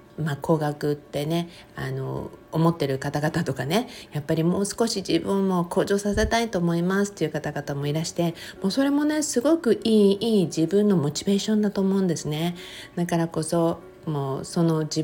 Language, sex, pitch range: Japanese, female, 150-190 Hz